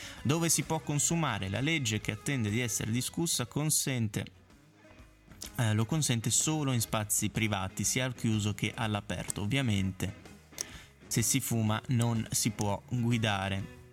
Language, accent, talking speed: Italian, native, 140 wpm